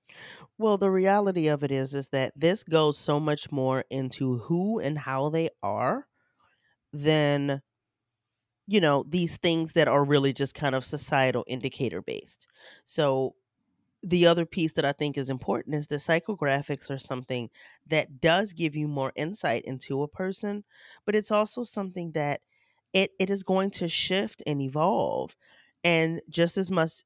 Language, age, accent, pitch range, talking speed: English, 30-49, American, 135-170 Hz, 160 wpm